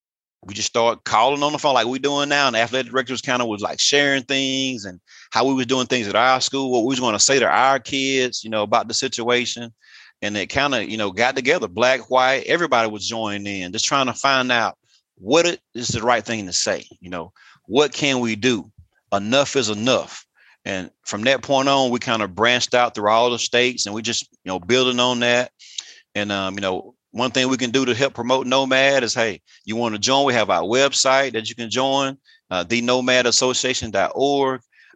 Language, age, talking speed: English, 30-49, 225 wpm